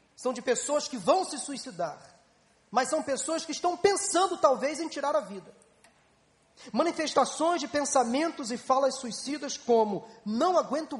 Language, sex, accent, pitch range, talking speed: Portuguese, male, Brazilian, 255-320 Hz, 145 wpm